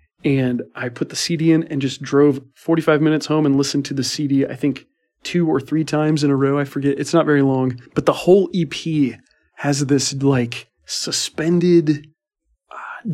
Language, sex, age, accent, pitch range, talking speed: English, male, 30-49, American, 125-155 Hz, 185 wpm